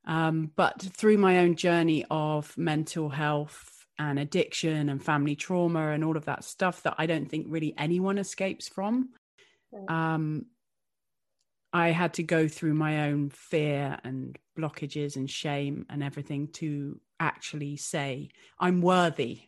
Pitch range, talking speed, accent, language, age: 145-175 Hz, 145 wpm, British, English, 30-49